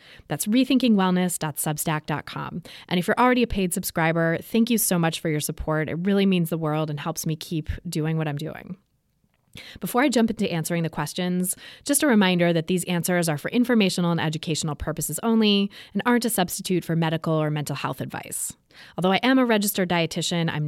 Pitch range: 165-210 Hz